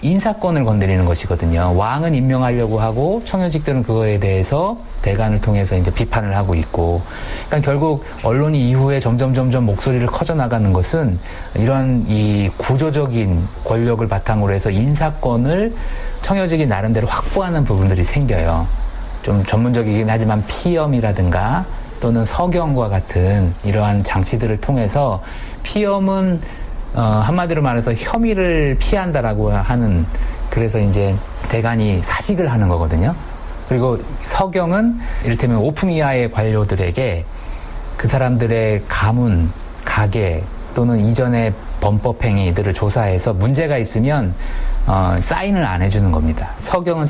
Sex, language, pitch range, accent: male, Korean, 95-140 Hz, native